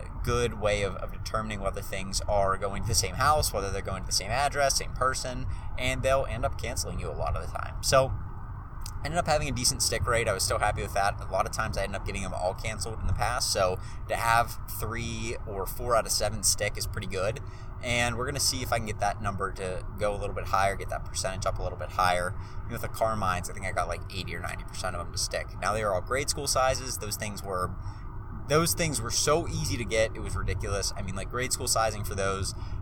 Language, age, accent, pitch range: English, 20-39, American, 95-110 Hz